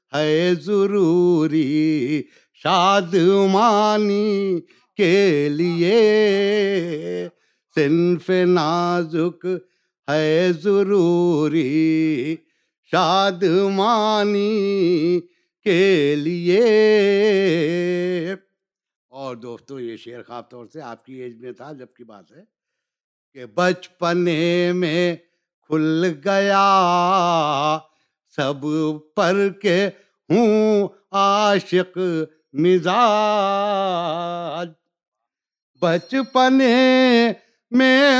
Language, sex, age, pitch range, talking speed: Urdu, male, 60-79, 170-205 Hz, 65 wpm